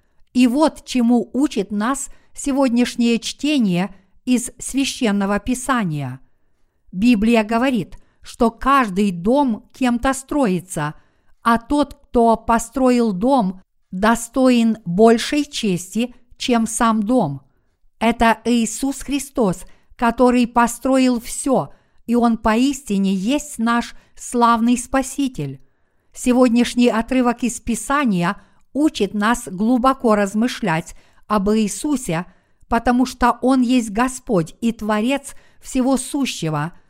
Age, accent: 50-69, native